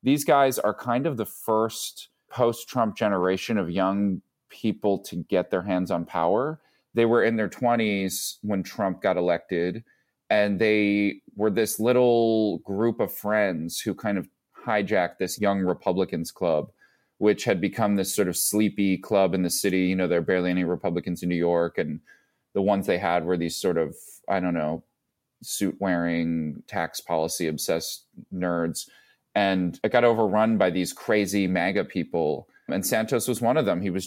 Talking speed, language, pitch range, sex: 175 wpm, English, 90-105 Hz, male